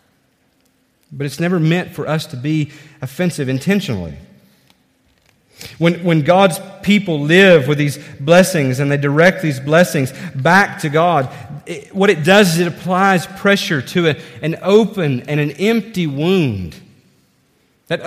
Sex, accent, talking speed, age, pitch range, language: male, American, 135 wpm, 40-59, 140-190 Hz, English